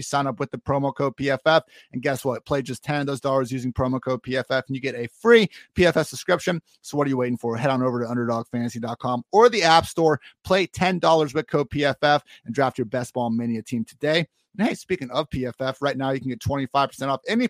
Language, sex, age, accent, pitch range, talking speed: English, male, 30-49, American, 125-165 Hz, 235 wpm